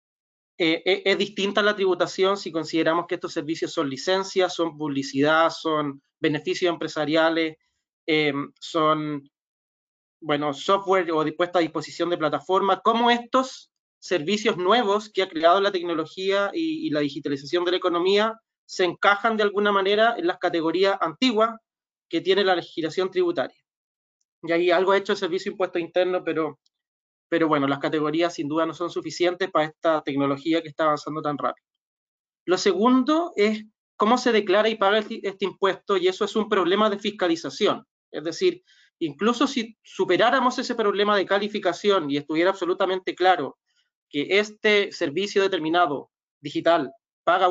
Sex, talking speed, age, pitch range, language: male, 155 wpm, 20-39, 165-205 Hz, Spanish